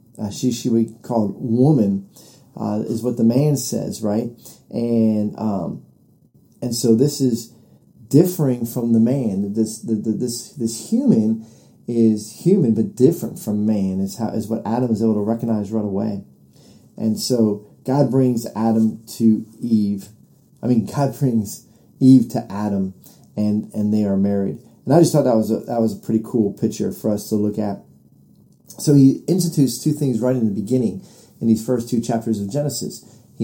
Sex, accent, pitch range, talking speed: male, American, 110-130 Hz, 180 wpm